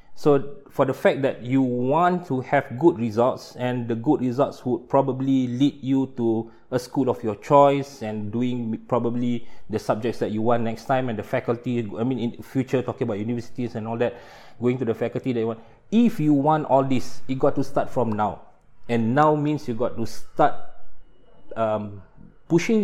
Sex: male